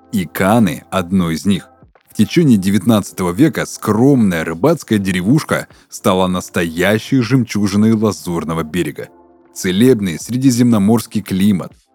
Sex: male